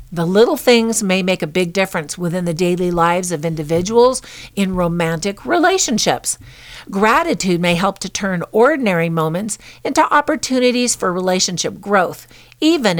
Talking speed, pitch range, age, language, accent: 140 wpm, 175-240 Hz, 50-69, English, American